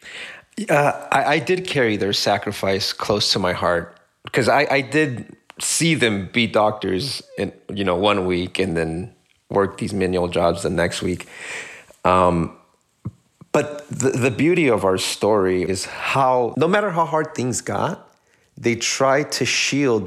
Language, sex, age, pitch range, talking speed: English, male, 30-49, 100-125 Hz, 160 wpm